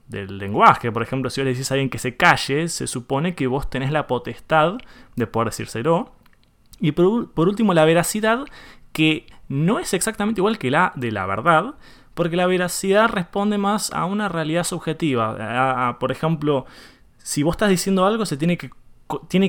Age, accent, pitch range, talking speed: 20-39, Argentinian, 120-195 Hz, 180 wpm